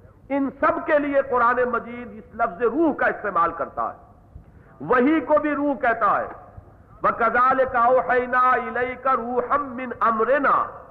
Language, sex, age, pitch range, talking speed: English, male, 50-69, 195-275 Hz, 150 wpm